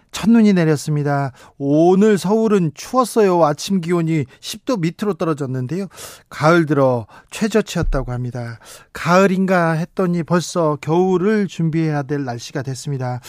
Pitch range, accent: 140-175 Hz, native